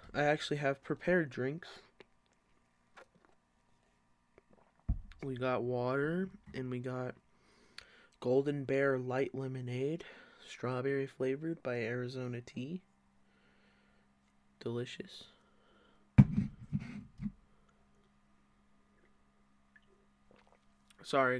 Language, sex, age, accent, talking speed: English, male, 20-39, American, 60 wpm